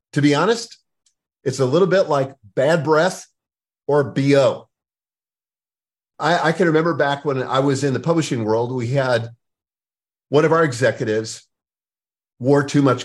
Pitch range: 135-180 Hz